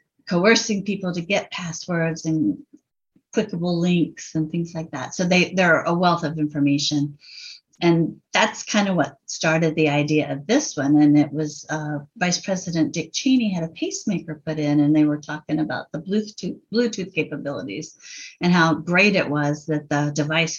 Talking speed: 180 wpm